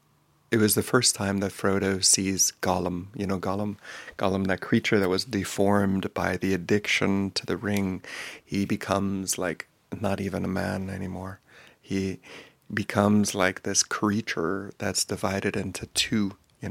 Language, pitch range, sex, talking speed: English, 95-105 Hz, male, 150 wpm